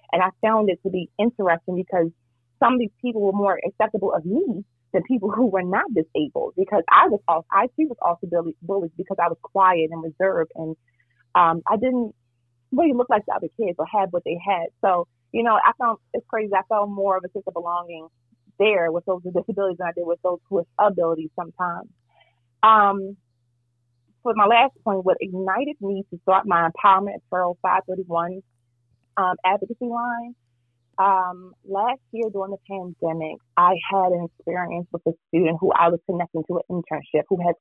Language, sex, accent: English, female, American